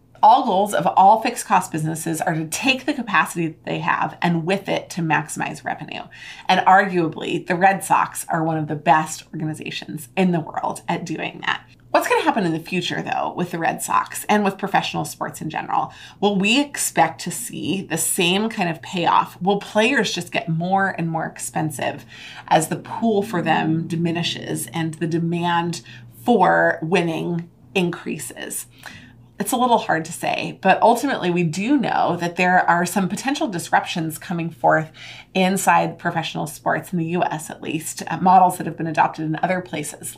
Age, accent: 30-49, American